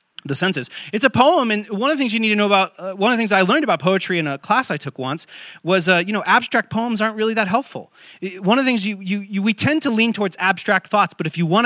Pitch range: 135-195 Hz